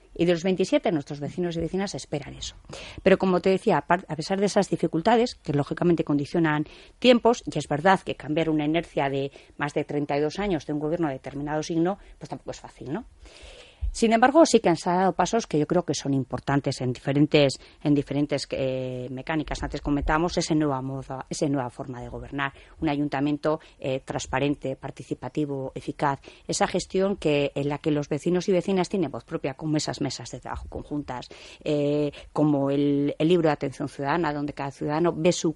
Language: Spanish